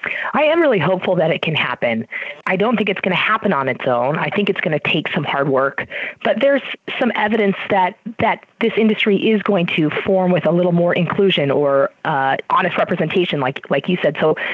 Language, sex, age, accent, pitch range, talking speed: English, female, 30-49, American, 155-200 Hz, 220 wpm